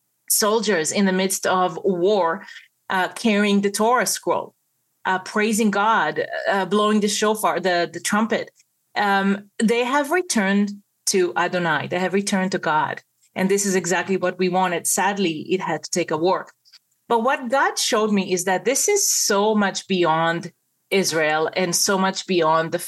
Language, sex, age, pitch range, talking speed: English, female, 30-49, 175-205 Hz, 170 wpm